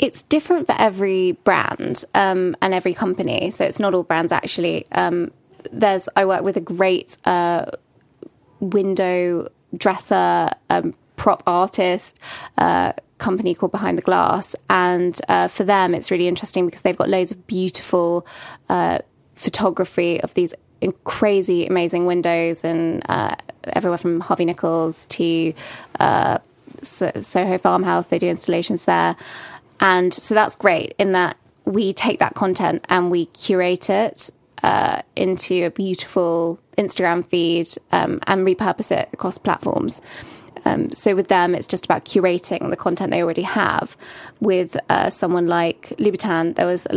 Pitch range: 170-195 Hz